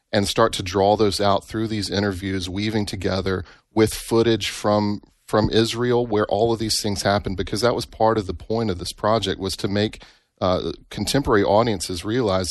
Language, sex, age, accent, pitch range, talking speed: English, male, 30-49, American, 95-115 Hz, 185 wpm